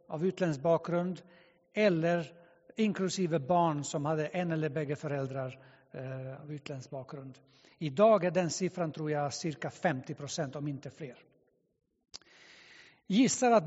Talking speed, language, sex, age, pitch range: 125 wpm, Swedish, male, 60-79, 155-195 Hz